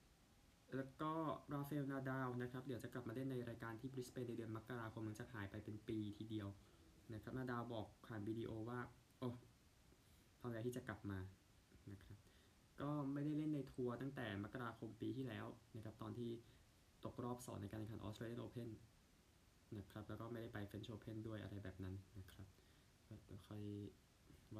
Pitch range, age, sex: 105-125 Hz, 20-39, male